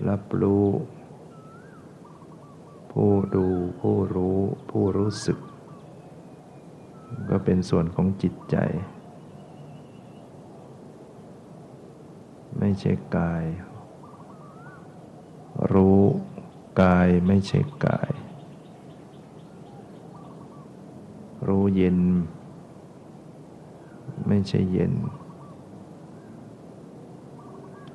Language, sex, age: English, male, 60-79